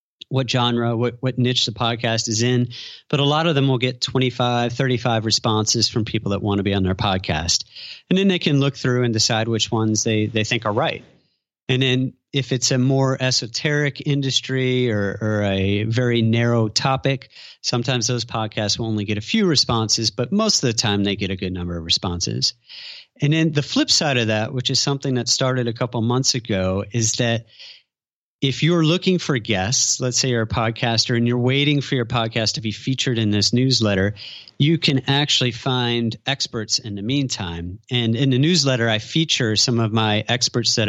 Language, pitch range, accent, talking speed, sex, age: English, 110-135 Hz, American, 200 wpm, male, 40-59